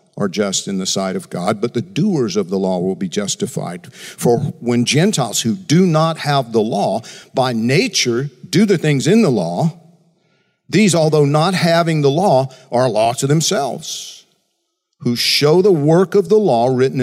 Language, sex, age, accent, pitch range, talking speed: English, male, 50-69, American, 120-180 Hz, 180 wpm